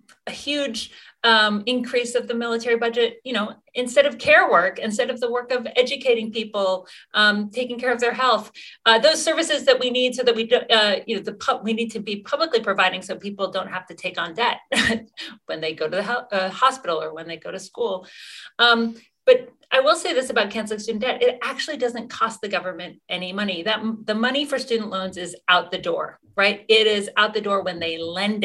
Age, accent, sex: 40-59, American, female